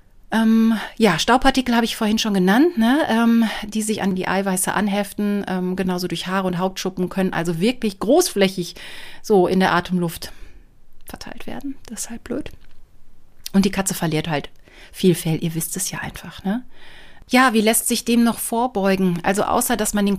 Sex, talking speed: female, 180 wpm